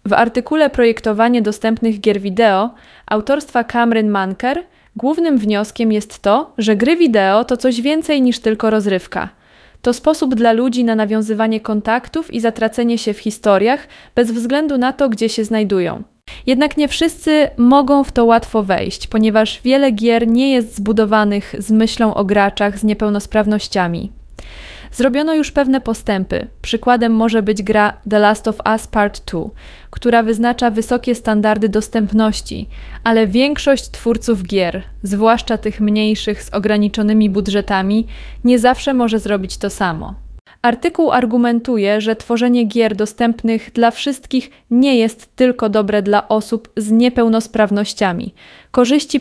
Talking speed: 140 wpm